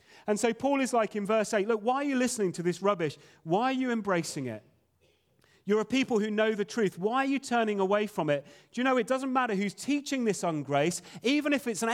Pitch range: 155-220 Hz